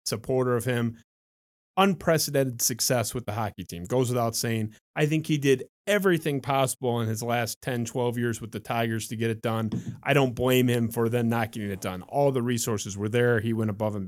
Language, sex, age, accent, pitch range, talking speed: English, male, 30-49, American, 115-150 Hz, 215 wpm